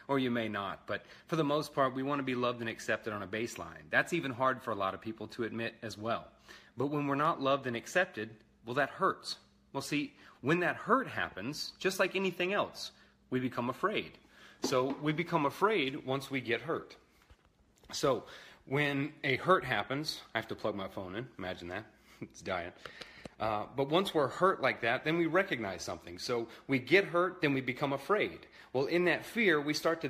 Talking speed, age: 205 wpm, 30-49